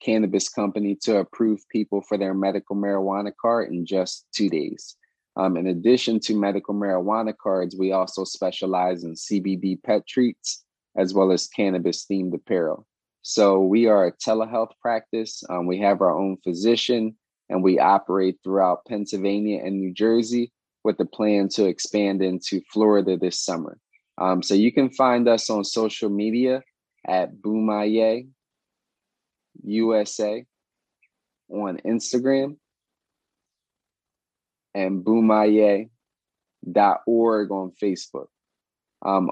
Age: 20-39